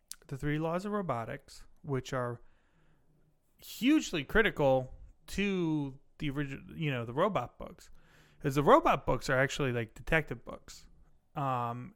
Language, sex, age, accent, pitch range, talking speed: English, male, 30-49, American, 125-160 Hz, 135 wpm